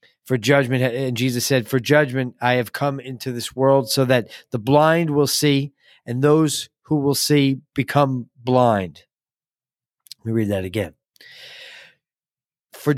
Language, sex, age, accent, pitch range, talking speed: English, male, 40-59, American, 125-150 Hz, 150 wpm